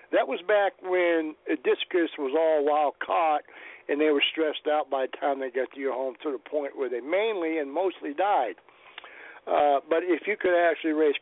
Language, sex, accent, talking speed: English, male, American, 205 wpm